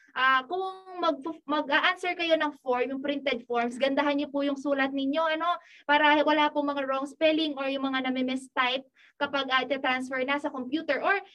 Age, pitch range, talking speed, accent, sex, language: 20-39, 265-320 Hz, 190 wpm, native, female, Filipino